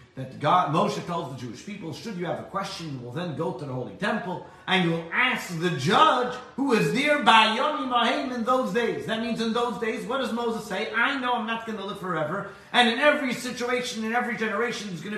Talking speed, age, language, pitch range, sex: 230 wpm, 40-59, English, 125-205 Hz, male